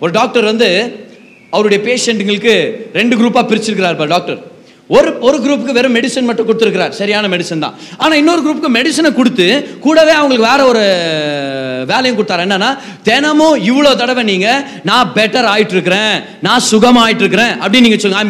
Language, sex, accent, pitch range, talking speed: Tamil, male, native, 210-285 Hz, 35 wpm